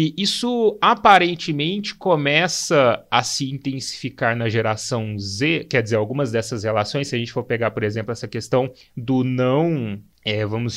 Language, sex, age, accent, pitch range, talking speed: Portuguese, male, 30-49, Brazilian, 125-180 Hz, 155 wpm